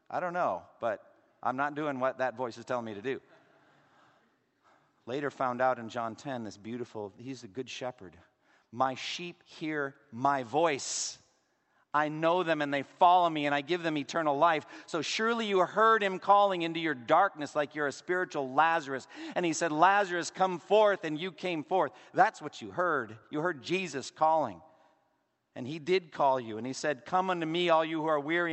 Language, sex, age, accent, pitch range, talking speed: English, male, 50-69, American, 130-180 Hz, 195 wpm